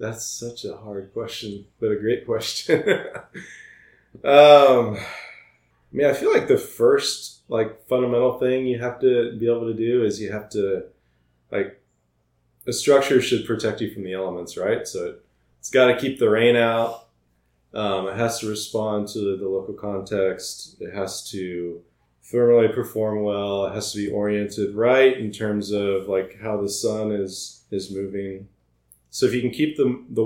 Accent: American